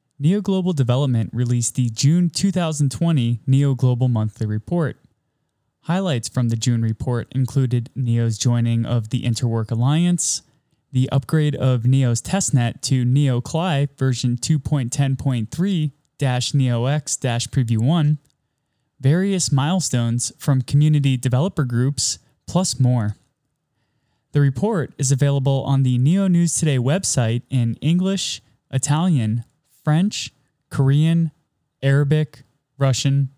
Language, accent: English, American